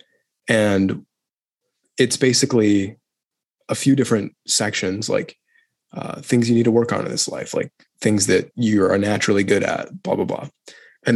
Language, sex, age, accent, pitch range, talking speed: English, male, 20-39, American, 100-120 Hz, 160 wpm